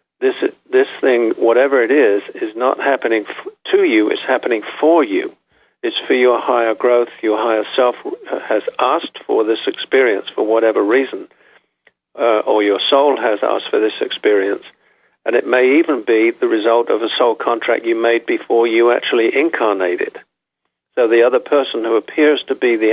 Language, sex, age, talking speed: English, male, 50-69, 175 wpm